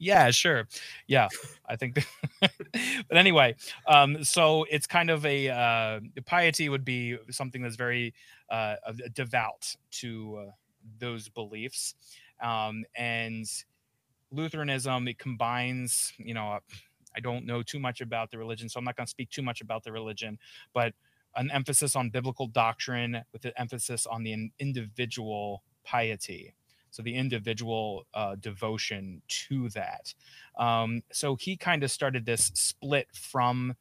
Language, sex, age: English, male, 20-39